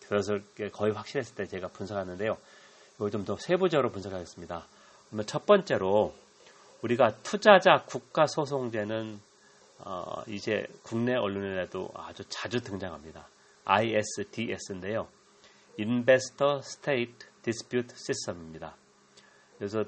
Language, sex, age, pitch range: Korean, male, 40-59, 105-140 Hz